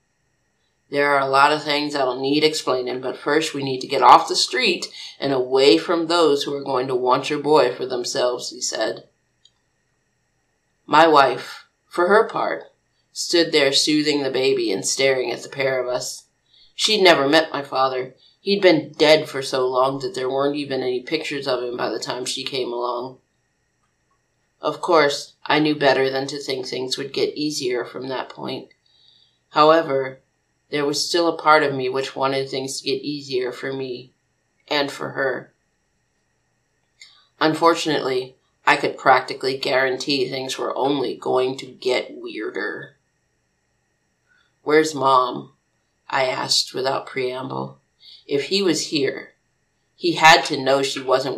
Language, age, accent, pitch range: English, 30-49, American, 130-155 Hz